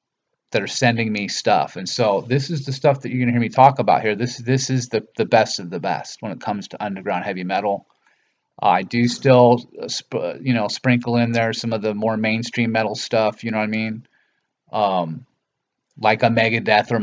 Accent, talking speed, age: American, 220 wpm, 30-49